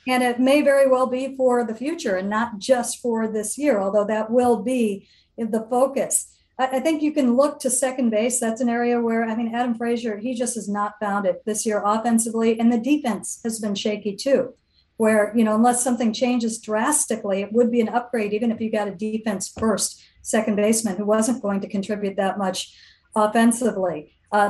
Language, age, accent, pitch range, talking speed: English, 50-69, American, 210-255 Hz, 205 wpm